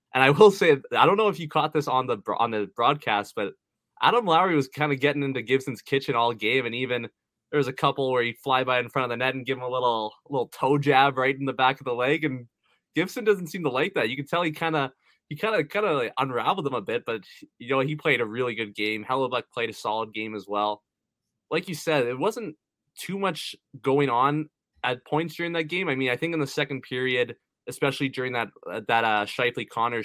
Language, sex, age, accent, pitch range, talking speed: English, male, 20-39, American, 120-150 Hz, 255 wpm